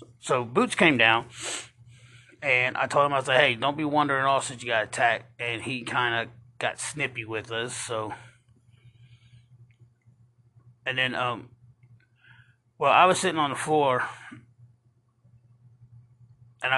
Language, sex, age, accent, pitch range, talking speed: English, male, 30-49, American, 120-130 Hz, 145 wpm